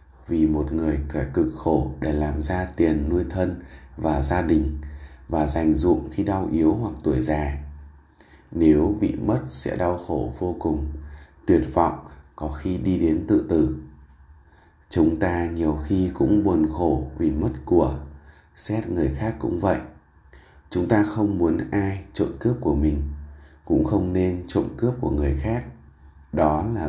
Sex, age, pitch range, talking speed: male, 20-39, 70-90 Hz, 165 wpm